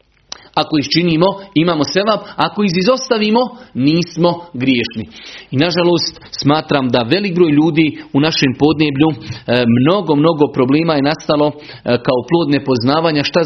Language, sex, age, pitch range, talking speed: Croatian, male, 40-59, 135-170 Hz, 125 wpm